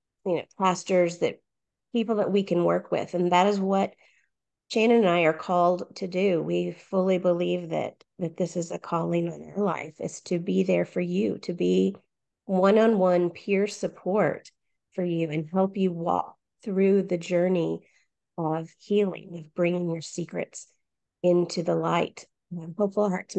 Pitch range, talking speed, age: 170-195 Hz, 165 wpm, 30-49